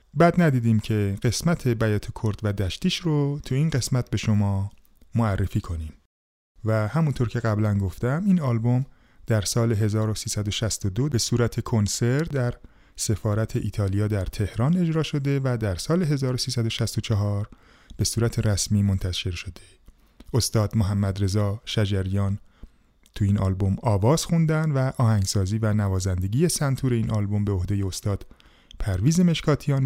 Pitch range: 100-130 Hz